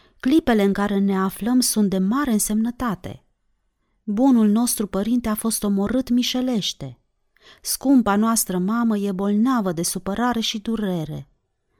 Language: Romanian